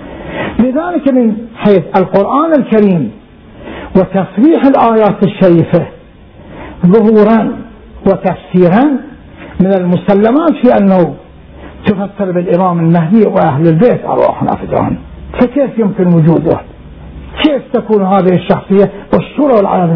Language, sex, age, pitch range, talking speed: Arabic, male, 50-69, 175-230 Hz, 90 wpm